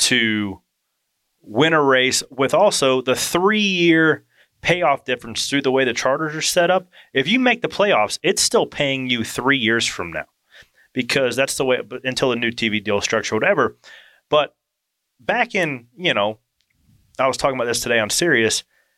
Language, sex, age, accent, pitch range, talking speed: English, male, 30-49, American, 115-150 Hz, 175 wpm